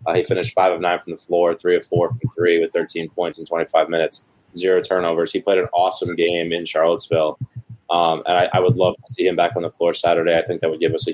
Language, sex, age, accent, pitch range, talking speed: English, male, 20-39, American, 90-125 Hz, 270 wpm